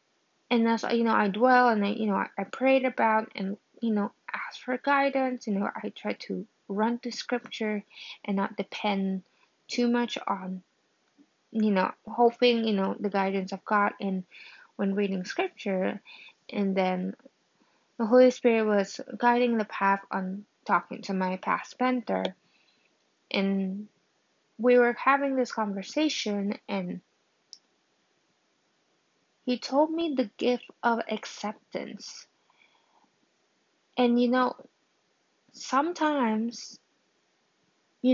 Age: 20-39